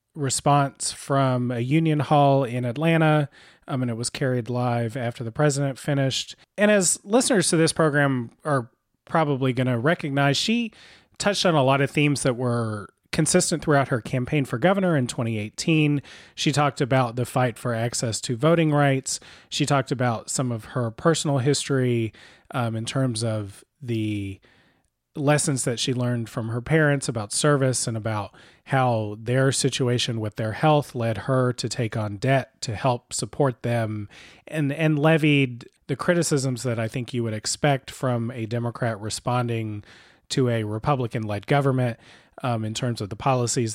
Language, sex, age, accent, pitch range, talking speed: English, male, 30-49, American, 115-145 Hz, 165 wpm